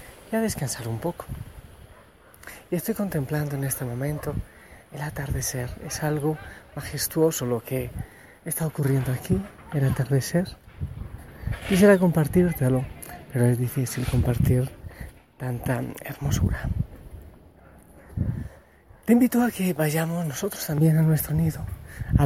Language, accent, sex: Spanish, Spanish, male